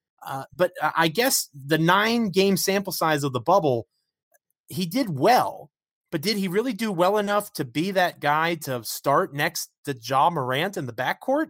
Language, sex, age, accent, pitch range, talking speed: English, male, 30-49, American, 135-190 Hz, 175 wpm